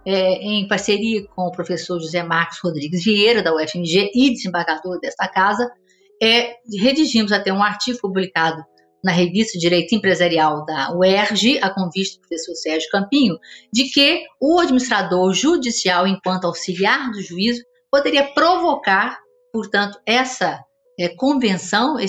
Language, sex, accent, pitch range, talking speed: Portuguese, female, Brazilian, 175-235 Hz, 125 wpm